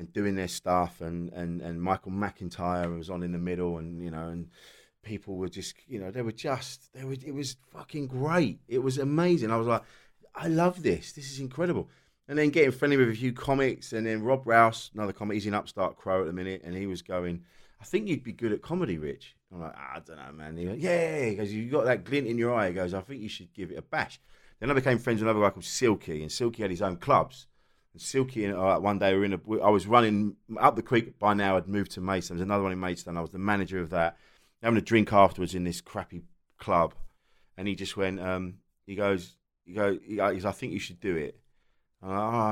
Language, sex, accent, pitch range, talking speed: English, male, British, 90-115 Hz, 260 wpm